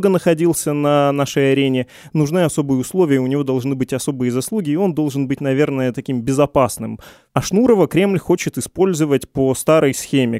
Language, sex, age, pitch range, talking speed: Russian, male, 20-39, 130-155 Hz, 160 wpm